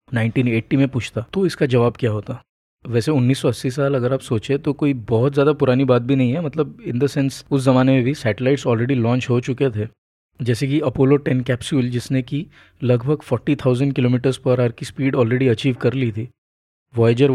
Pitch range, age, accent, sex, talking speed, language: 120-140 Hz, 20-39, native, male, 200 wpm, Hindi